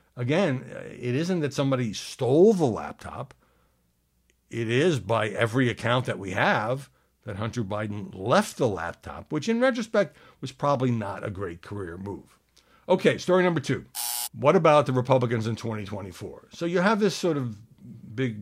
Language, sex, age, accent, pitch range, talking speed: English, male, 60-79, American, 100-140 Hz, 160 wpm